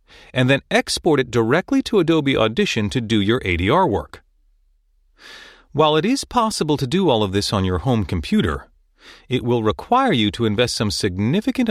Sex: male